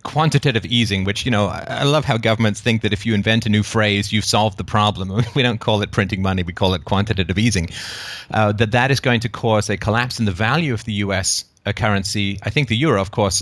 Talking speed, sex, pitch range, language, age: 245 wpm, male, 100-120 Hz, English, 30-49